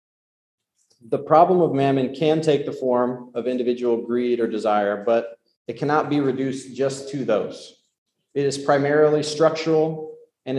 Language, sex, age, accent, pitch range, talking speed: English, male, 30-49, American, 120-150 Hz, 145 wpm